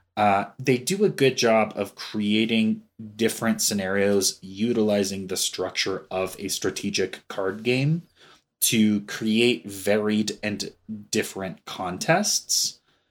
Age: 20-39